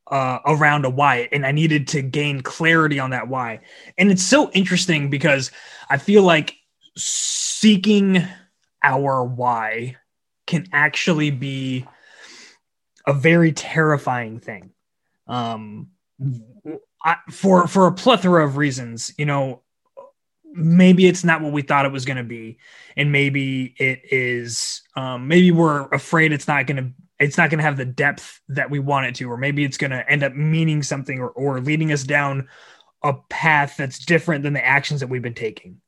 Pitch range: 130-165 Hz